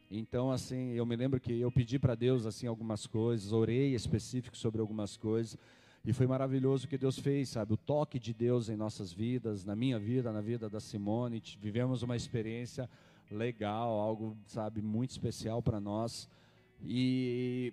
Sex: male